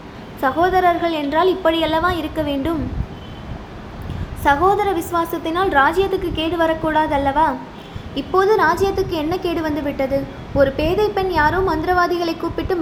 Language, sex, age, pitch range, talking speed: Tamil, female, 20-39, 295-355 Hz, 105 wpm